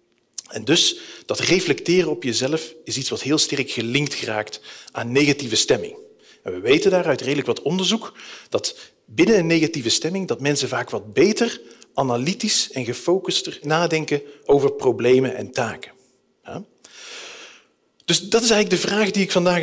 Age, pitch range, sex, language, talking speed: 40-59, 135-200 Hz, male, Dutch, 155 wpm